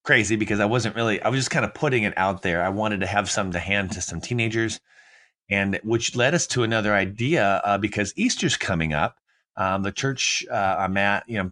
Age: 30-49